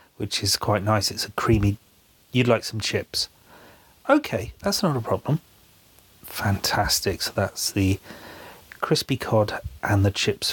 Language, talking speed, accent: English, 140 wpm, British